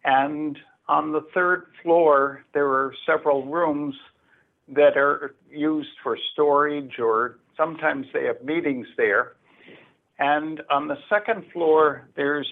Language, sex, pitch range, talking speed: English, male, 140-160 Hz, 125 wpm